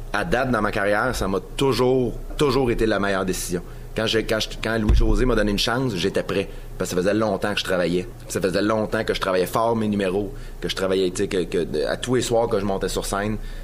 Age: 30-49